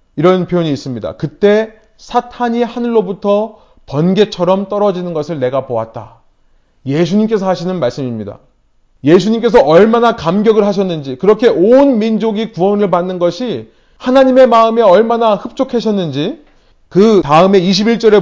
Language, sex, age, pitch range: Korean, male, 30-49, 170-225 Hz